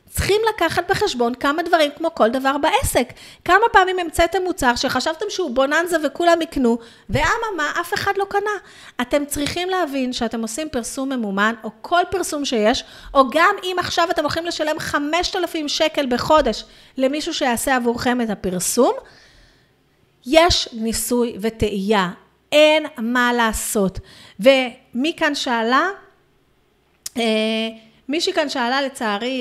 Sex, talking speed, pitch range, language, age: female, 125 wpm, 235-335 Hz, Hebrew, 30-49